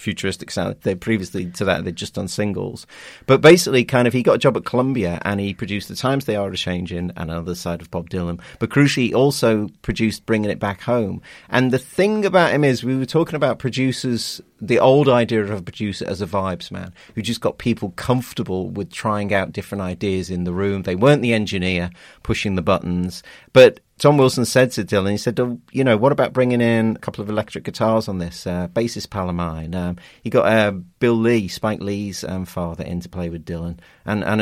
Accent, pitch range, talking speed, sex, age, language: British, 100-130 Hz, 220 wpm, male, 30-49, English